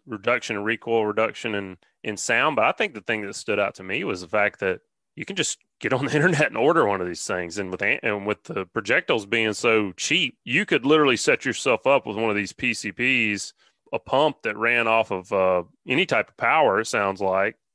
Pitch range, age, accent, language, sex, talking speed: 100-115 Hz, 30-49, American, English, male, 230 wpm